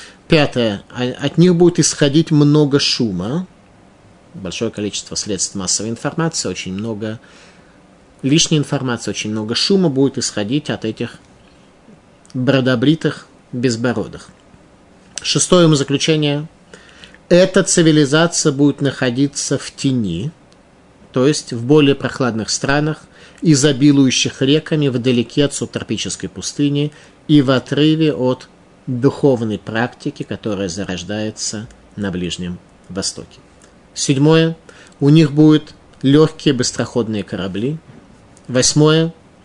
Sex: male